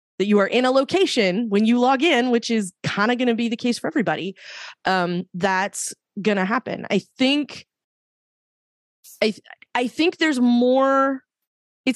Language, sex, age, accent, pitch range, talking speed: English, female, 20-39, American, 180-230 Hz, 175 wpm